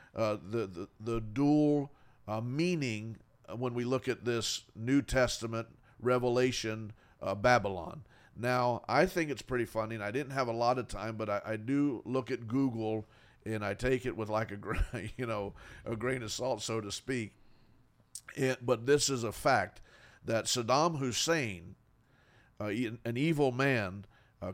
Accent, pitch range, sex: American, 110-125 Hz, male